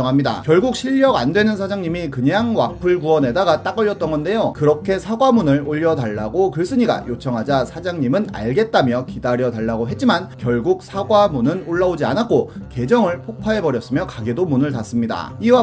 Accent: native